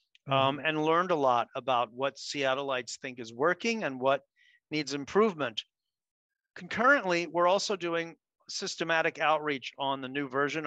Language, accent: English, American